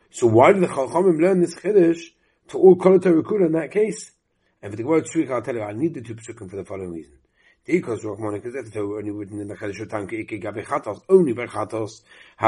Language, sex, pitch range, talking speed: English, male, 105-140 Hz, 160 wpm